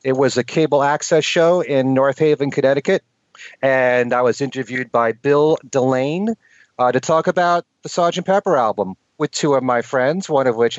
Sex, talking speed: male, 185 wpm